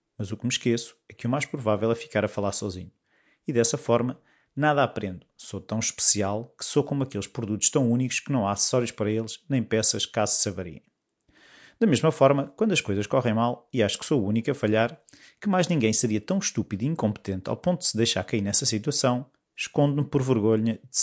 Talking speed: 220 wpm